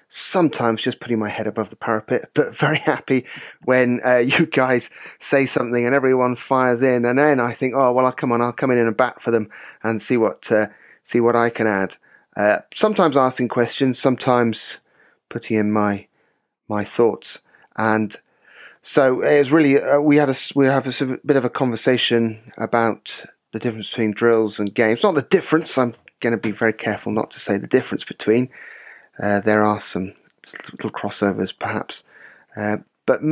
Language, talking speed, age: English, 185 wpm, 10-29